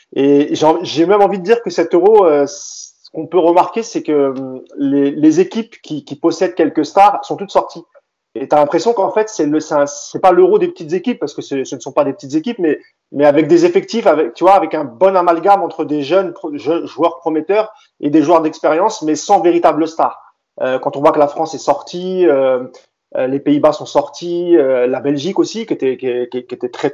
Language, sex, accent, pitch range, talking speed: French, male, French, 140-185 Hz, 210 wpm